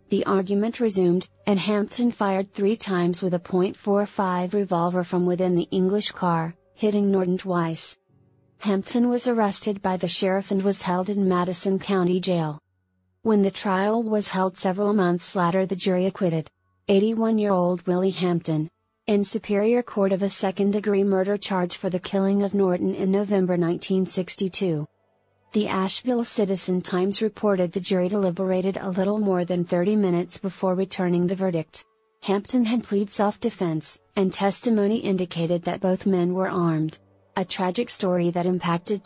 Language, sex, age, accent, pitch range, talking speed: English, female, 40-59, American, 180-205 Hz, 150 wpm